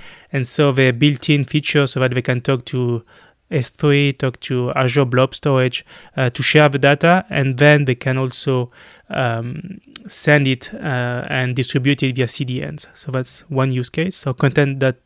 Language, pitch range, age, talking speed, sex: English, 130-150 Hz, 20-39, 175 wpm, male